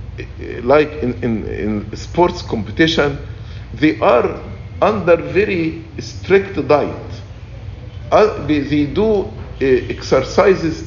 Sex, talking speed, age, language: male, 95 wpm, 50-69, English